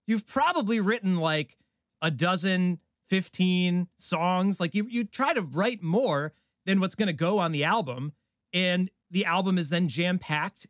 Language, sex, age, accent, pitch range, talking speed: English, male, 30-49, American, 155-195 Hz, 165 wpm